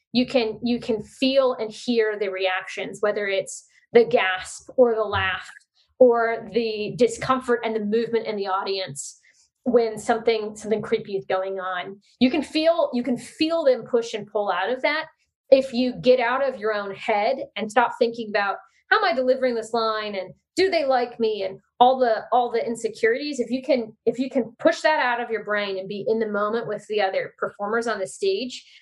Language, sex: English, female